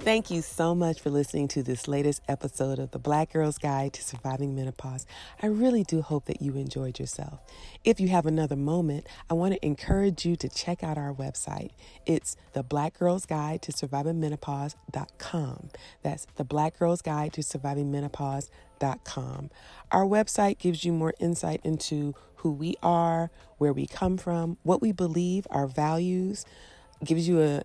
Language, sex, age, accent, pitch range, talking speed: English, female, 40-59, American, 140-170 Hz, 165 wpm